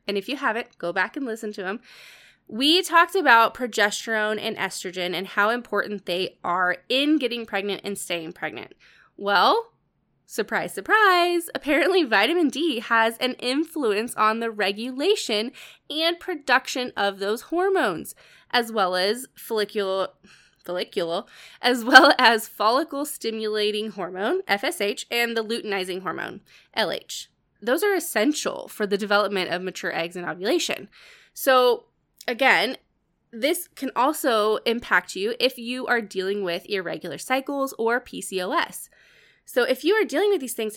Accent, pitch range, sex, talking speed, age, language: American, 205-300 Hz, female, 140 wpm, 20-39, English